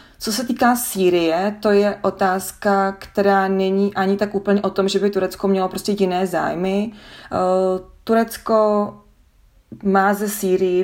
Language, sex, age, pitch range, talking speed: Czech, female, 30-49, 180-205 Hz, 140 wpm